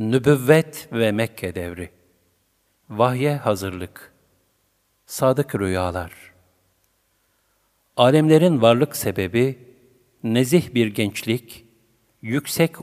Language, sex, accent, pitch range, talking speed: Turkish, male, native, 105-130 Hz, 70 wpm